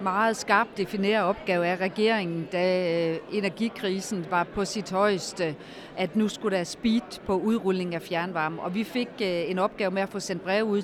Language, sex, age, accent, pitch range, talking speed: Danish, female, 40-59, native, 175-215 Hz, 175 wpm